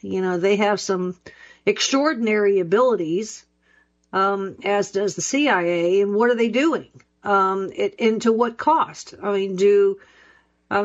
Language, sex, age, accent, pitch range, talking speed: English, female, 50-69, American, 190-230 Hz, 150 wpm